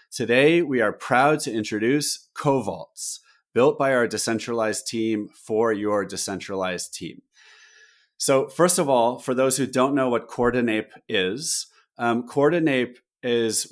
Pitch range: 110-130 Hz